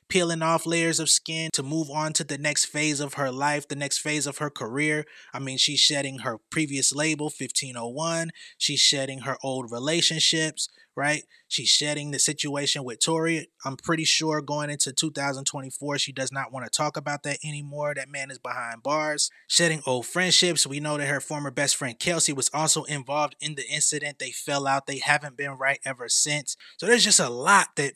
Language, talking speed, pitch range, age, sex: English, 200 wpm, 135-165 Hz, 20-39, male